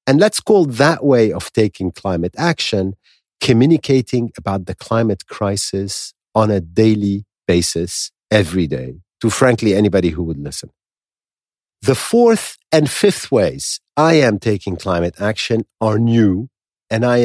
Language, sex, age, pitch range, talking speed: English, male, 50-69, 100-130 Hz, 140 wpm